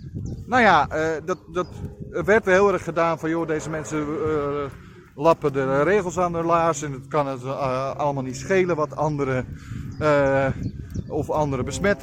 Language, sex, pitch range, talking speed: Dutch, male, 135-185 Hz, 170 wpm